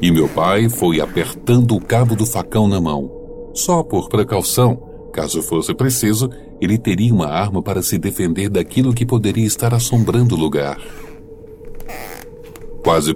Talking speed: 145 wpm